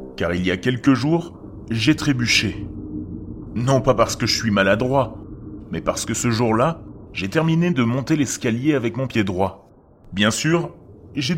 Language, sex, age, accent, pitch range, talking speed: French, male, 30-49, French, 105-140 Hz, 170 wpm